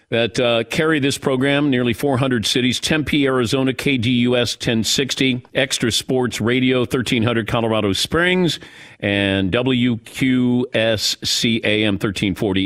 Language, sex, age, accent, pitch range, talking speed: English, male, 50-69, American, 110-140 Hz, 100 wpm